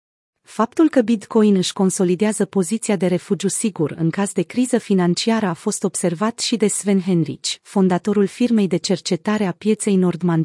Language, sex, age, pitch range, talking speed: Romanian, female, 30-49, 175-220 Hz, 160 wpm